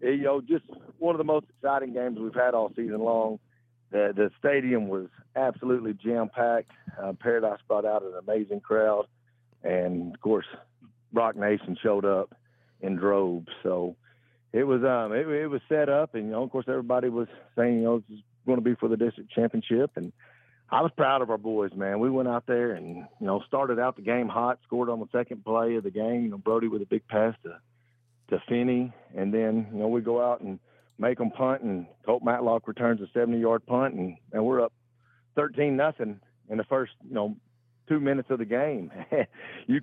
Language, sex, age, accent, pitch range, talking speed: English, male, 50-69, American, 110-125 Hz, 200 wpm